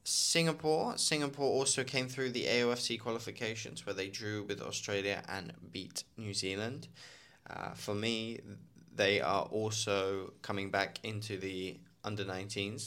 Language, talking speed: English, 130 wpm